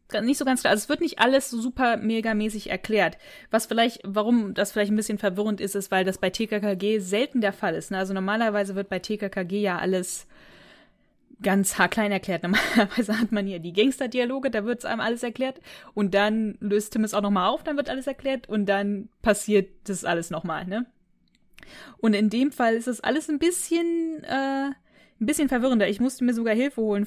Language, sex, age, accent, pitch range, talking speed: German, female, 20-39, German, 180-225 Hz, 205 wpm